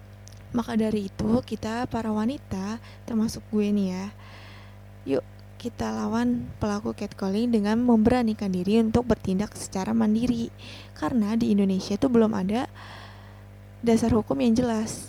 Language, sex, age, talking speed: Indonesian, female, 20-39, 125 wpm